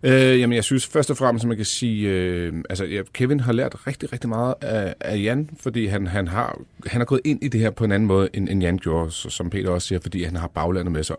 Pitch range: 90-115 Hz